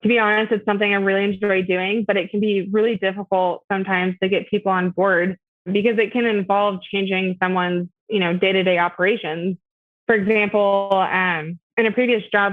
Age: 20-39